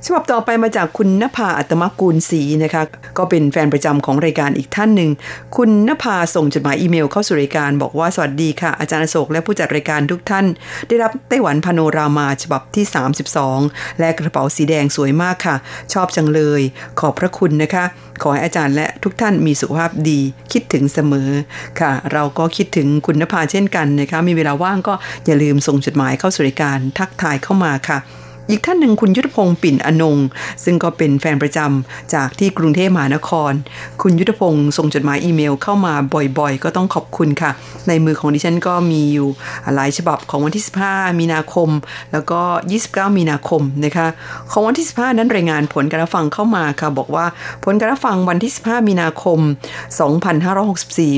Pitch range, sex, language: 145-185 Hz, female, Thai